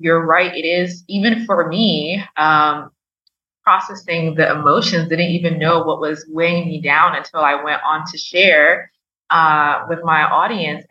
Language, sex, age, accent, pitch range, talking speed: English, female, 20-39, American, 155-180 Hz, 160 wpm